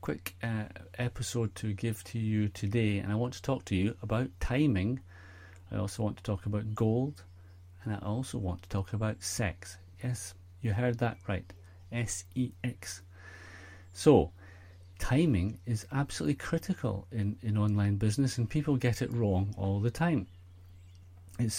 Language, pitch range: English, 90-120 Hz